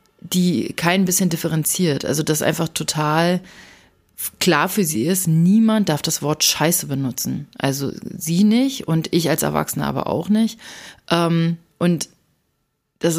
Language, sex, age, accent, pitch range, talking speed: German, female, 30-49, German, 150-180 Hz, 135 wpm